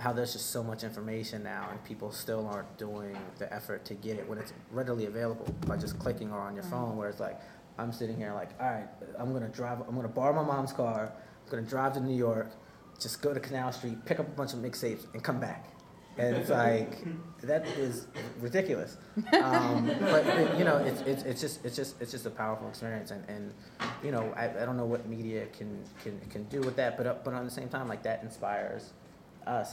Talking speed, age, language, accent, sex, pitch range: 230 wpm, 30-49, English, American, male, 105-125 Hz